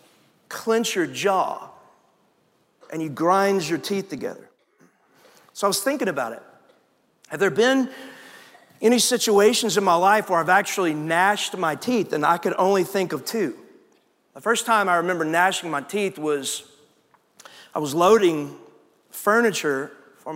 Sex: male